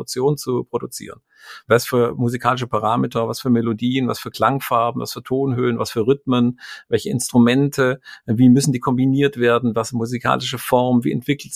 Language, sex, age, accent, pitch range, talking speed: German, male, 50-69, German, 115-140 Hz, 160 wpm